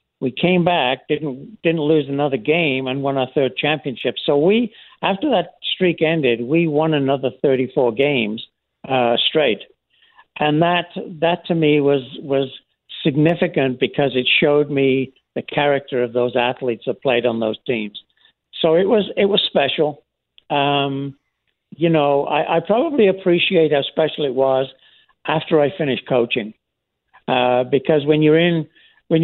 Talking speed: 155 wpm